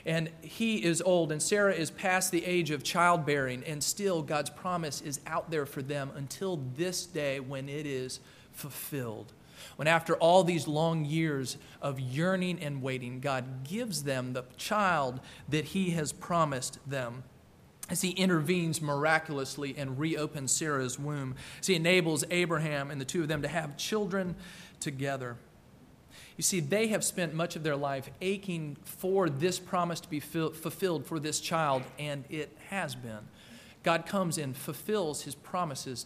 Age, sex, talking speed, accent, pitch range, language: 40-59, male, 165 wpm, American, 140-180 Hz, English